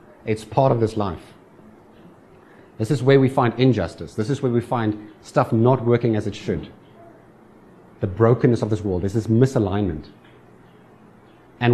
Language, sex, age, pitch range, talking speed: English, male, 30-49, 110-130 Hz, 160 wpm